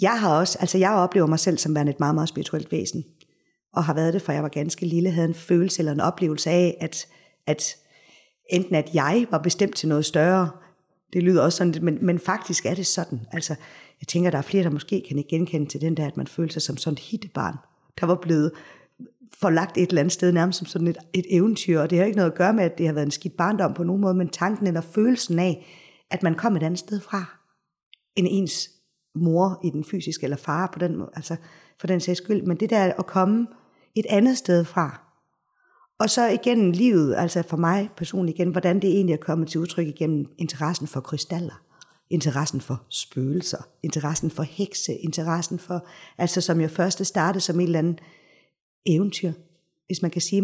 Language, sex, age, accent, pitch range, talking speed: Danish, female, 50-69, native, 160-185 Hz, 220 wpm